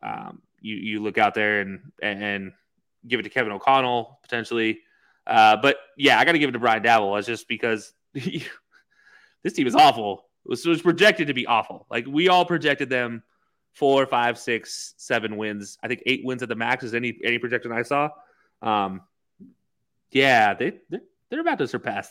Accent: American